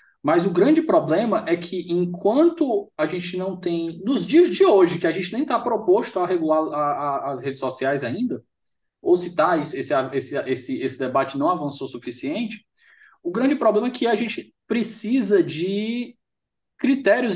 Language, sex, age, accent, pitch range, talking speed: Portuguese, male, 20-39, Brazilian, 180-305 Hz, 175 wpm